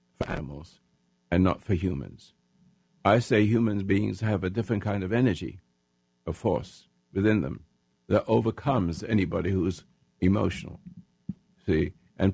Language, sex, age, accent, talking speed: English, male, 60-79, American, 130 wpm